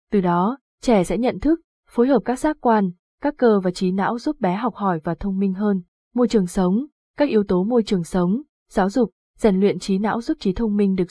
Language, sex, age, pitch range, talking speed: Vietnamese, female, 20-39, 190-240 Hz, 240 wpm